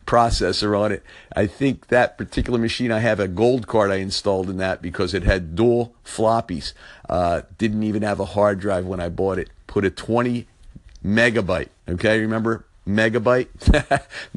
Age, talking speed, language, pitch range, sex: 50-69, 165 wpm, English, 95-120 Hz, male